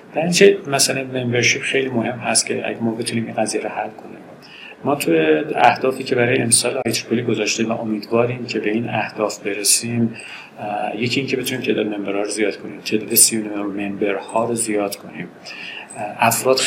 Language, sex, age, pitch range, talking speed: Persian, male, 50-69, 110-125 Hz, 160 wpm